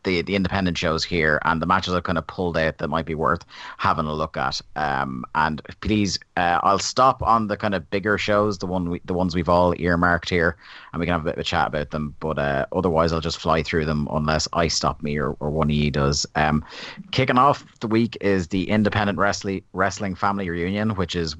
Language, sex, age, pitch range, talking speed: English, male, 30-49, 80-100 Hz, 240 wpm